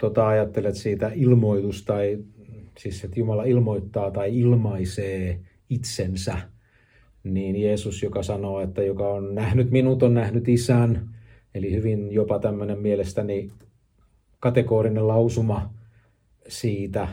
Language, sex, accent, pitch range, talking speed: Finnish, male, native, 100-120 Hz, 100 wpm